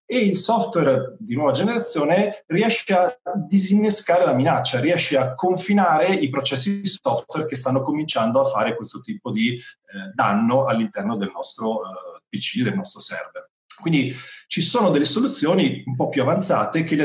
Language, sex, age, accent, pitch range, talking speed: Italian, male, 40-59, native, 130-185 Hz, 165 wpm